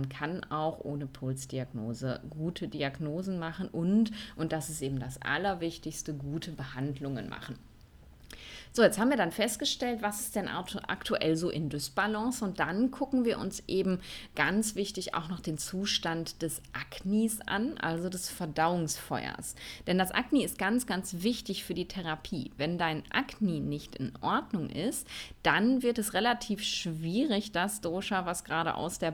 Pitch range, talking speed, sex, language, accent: 150-200 Hz, 160 wpm, female, German, German